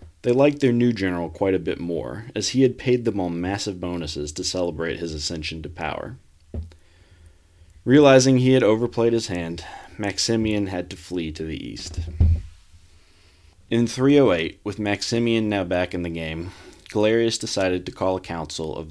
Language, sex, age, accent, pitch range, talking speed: English, male, 30-49, American, 85-105 Hz, 165 wpm